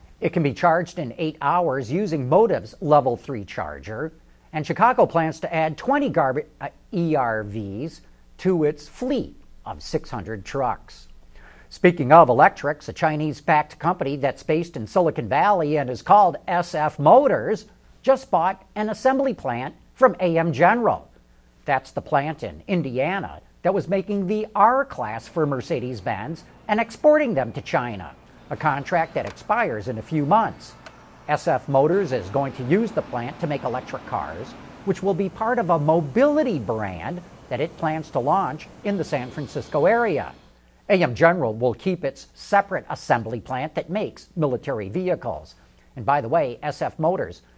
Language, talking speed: English, 155 wpm